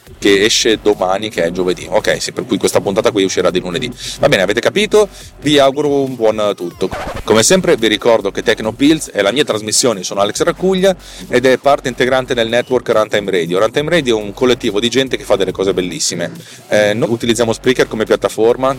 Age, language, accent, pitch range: 30-49, Italian, native, 95-125 Hz